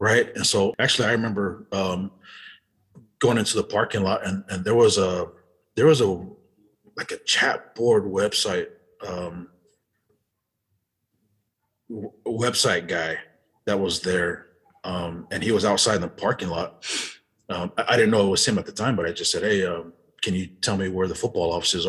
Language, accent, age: English, American, 30-49